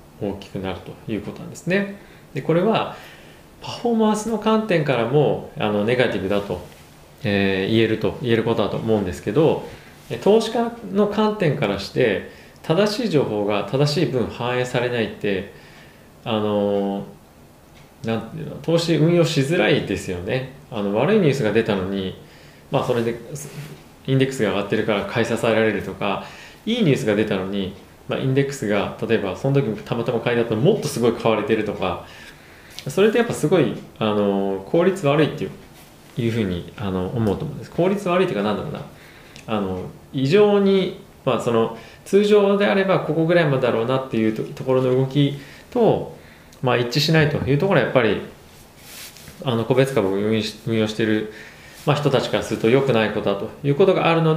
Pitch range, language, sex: 105-155 Hz, Japanese, male